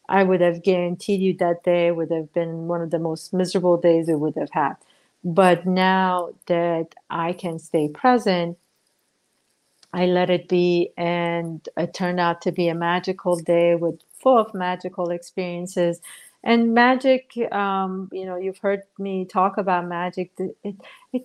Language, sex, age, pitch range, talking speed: English, female, 40-59, 175-195 Hz, 165 wpm